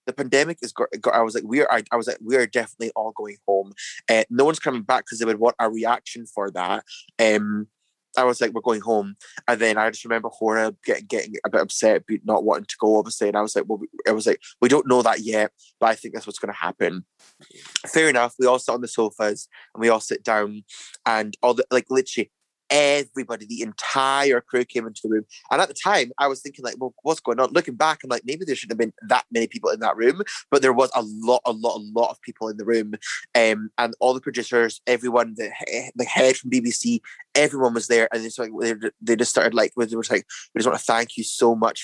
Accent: British